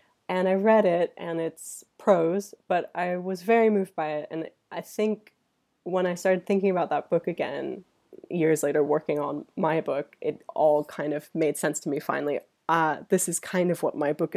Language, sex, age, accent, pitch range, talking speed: English, female, 20-39, American, 155-195 Hz, 200 wpm